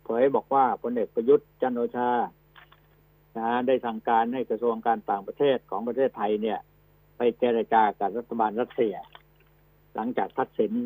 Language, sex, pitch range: Thai, male, 115-145 Hz